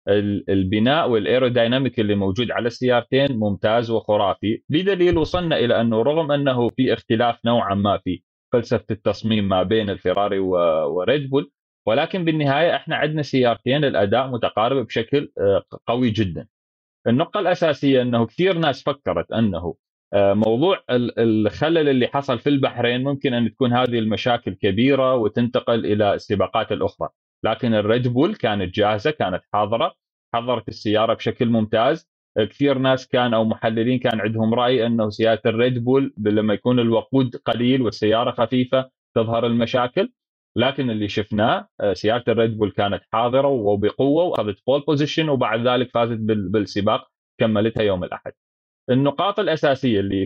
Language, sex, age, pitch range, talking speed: Arabic, male, 30-49, 105-135 Hz, 135 wpm